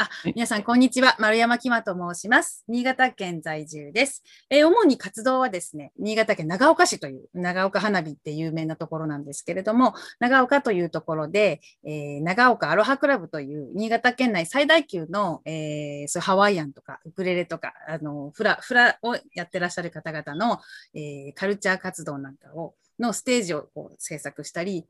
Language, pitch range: Japanese, 155-240 Hz